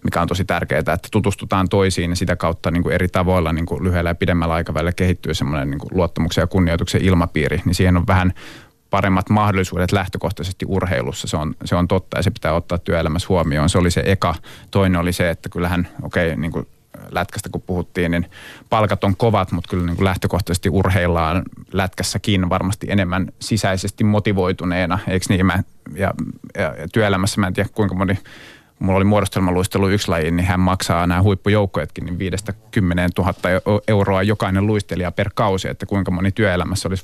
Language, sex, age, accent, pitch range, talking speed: Finnish, male, 30-49, native, 90-100 Hz, 180 wpm